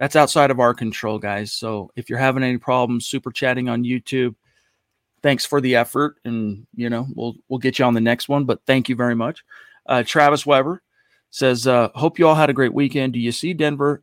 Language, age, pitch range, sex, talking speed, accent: English, 40-59, 115-140 Hz, male, 225 wpm, American